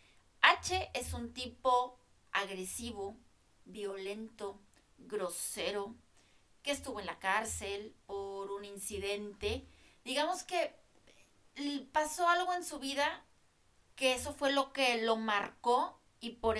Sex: female